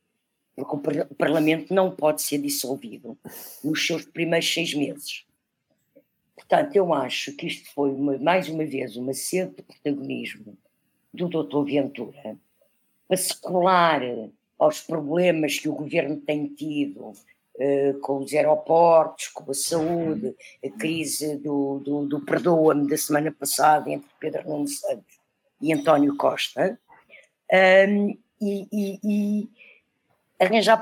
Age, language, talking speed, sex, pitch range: 50-69, Portuguese, 130 wpm, female, 145-205 Hz